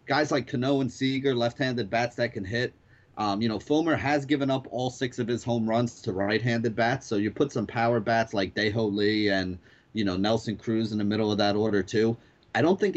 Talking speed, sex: 230 wpm, male